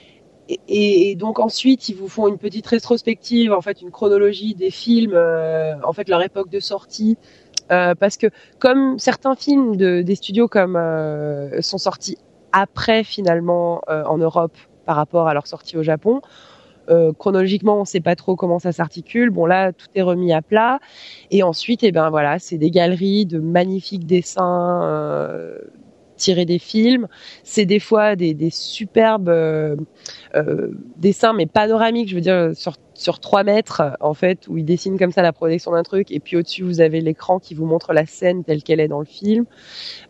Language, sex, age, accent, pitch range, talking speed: French, female, 20-39, French, 165-210 Hz, 190 wpm